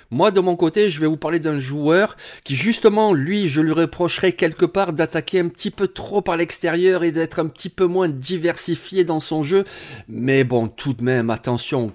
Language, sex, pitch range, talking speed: French, male, 135-170 Hz, 205 wpm